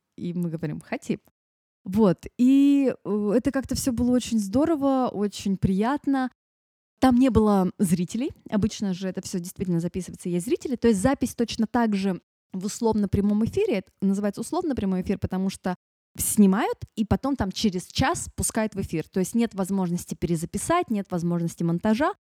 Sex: female